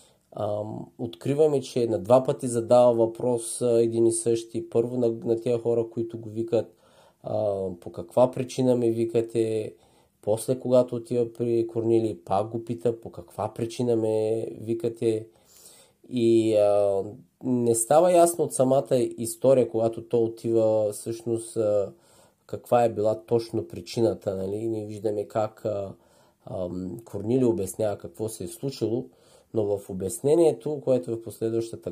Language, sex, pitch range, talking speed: Bulgarian, male, 105-125 Hz, 140 wpm